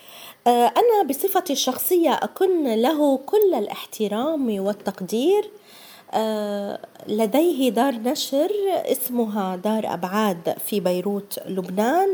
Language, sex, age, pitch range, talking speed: Arabic, female, 20-39, 200-310 Hz, 85 wpm